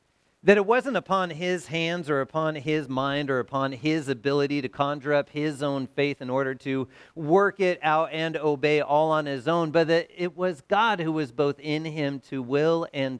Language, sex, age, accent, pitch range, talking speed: English, male, 40-59, American, 110-150 Hz, 205 wpm